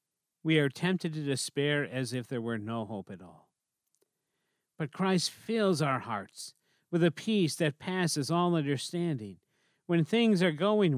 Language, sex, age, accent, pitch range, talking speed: English, male, 50-69, American, 125-175 Hz, 160 wpm